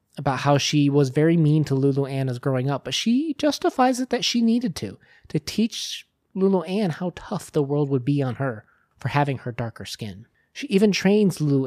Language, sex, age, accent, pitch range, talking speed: English, male, 30-49, American, 125-175 Hz, 210 wpm